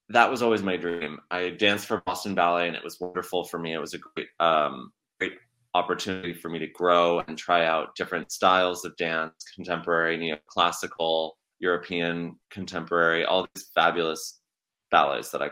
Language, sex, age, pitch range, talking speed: English, male, 20-39, 85-100 Hz, 170 wpm